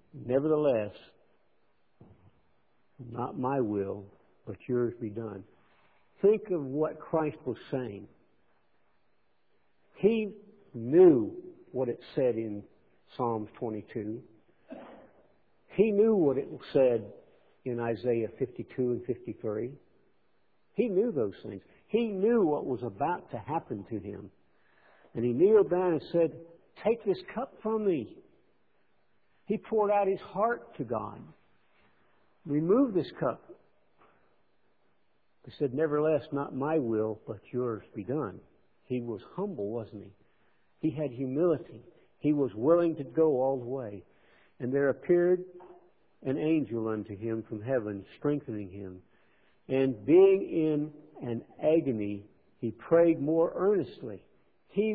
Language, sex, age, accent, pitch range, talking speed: English, male, 60-79, American, 115-180 Hz, 125 wpm